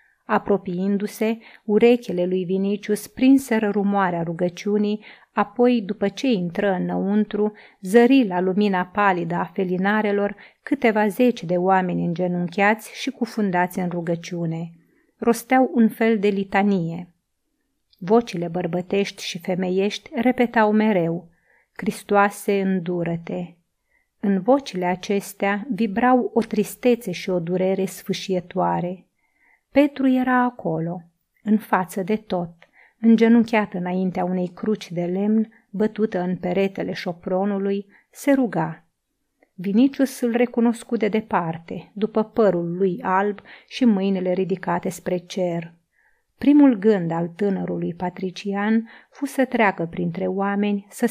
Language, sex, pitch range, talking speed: Romanian, female, 180-225 Hz, 110 wpm